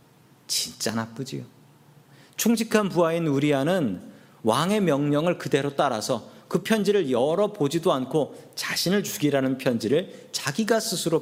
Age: 40-59